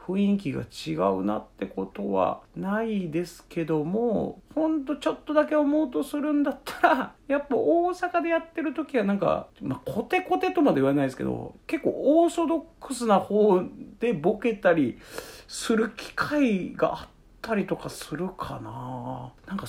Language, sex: Japanese, male